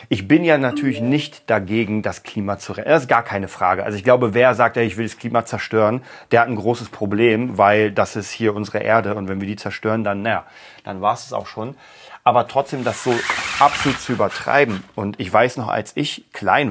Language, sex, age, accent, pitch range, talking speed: German, male, 40-59, German, 105-130 Hz, 225 wpm